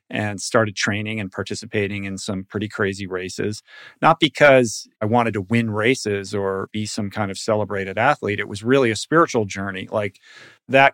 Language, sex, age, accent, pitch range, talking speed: English, male, 40-59, American, 100-120 Hz, 175 wpm